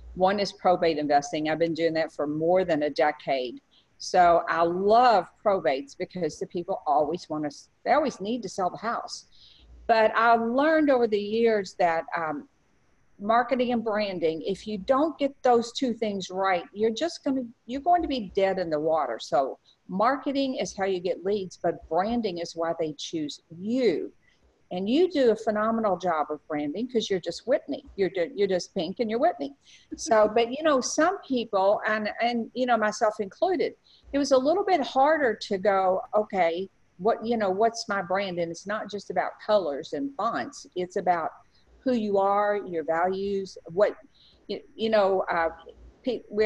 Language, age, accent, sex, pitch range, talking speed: English, 50-69, American, female, 175-235 Hz, 185 wpm